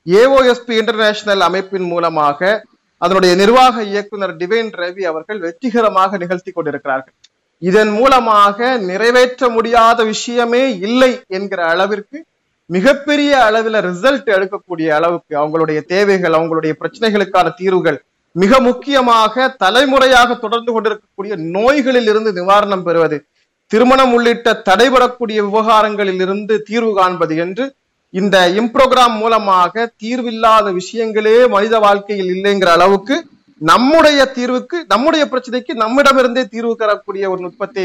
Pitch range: 180-245 Hz